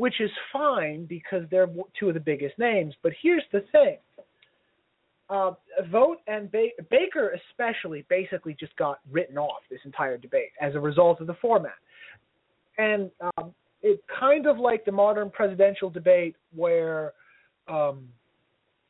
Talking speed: 145 wpm